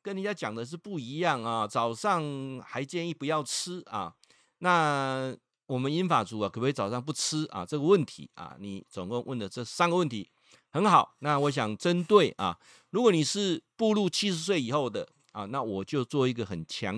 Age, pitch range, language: 50-69, 115-170 Hz, Chinese